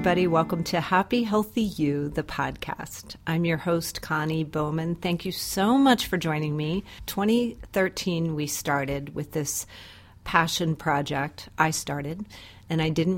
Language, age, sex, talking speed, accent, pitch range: English, 40-59, female, 140 wpm, American, 155-190 Hz